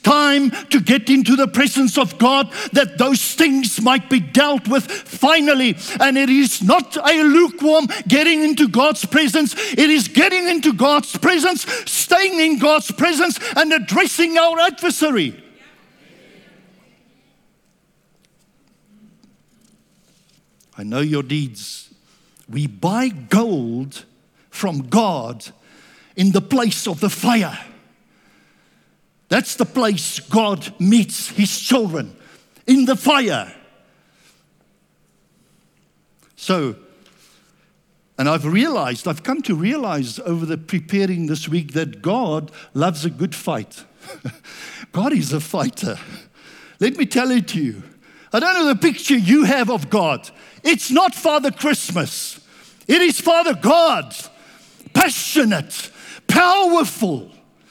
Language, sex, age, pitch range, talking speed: English, male, 60-79, 190-295 Hz, 120 wpm